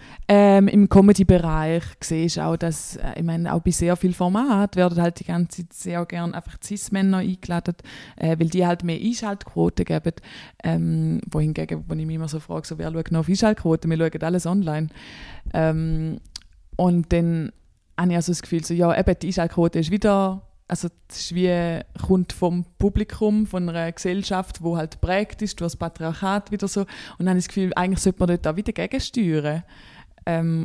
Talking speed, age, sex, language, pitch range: 190 wpm, 20-39, female, German, 160-185 Hz